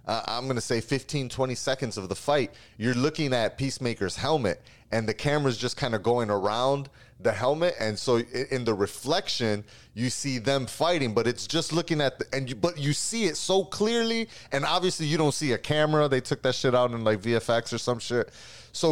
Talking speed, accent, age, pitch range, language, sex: 215 wpm, American, 30-49, 110-145 Hz, English, male